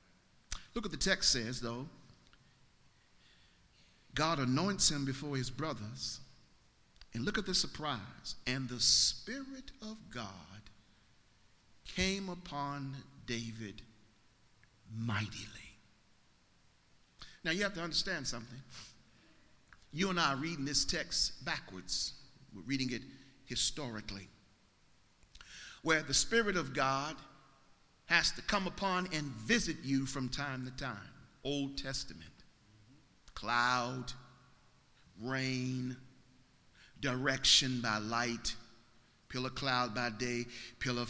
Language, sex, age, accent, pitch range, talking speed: English, male, 50-69, American, 115-145 Hz, 105 wpm